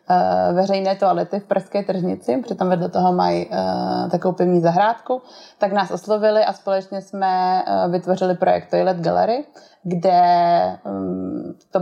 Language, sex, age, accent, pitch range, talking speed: Czech, female, 20-39, native, 175-195 Hz, 120 wpm